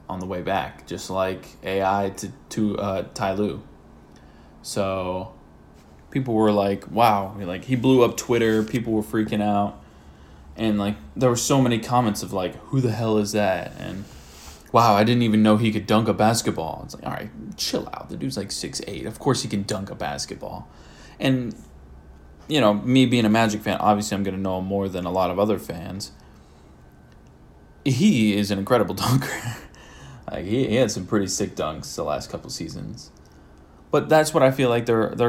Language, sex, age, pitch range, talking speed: English, male, 20-39, 80-110 Hz, 195 wpm